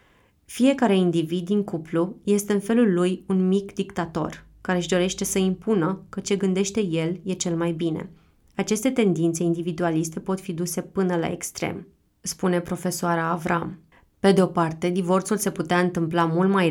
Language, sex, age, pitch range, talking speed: Romanian, female, 20-39, 165-185 Hz, 165 wpm